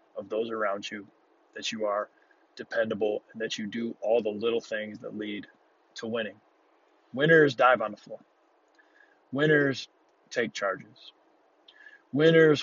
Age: 20-39